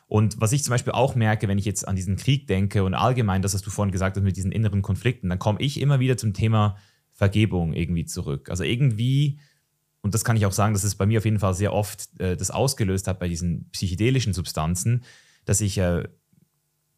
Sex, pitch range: male, 100-120 Hz